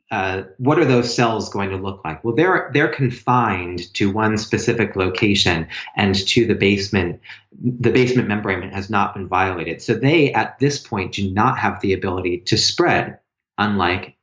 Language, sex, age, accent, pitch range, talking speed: English, male, 30-49, American, 95-120 Hz, 175 wpm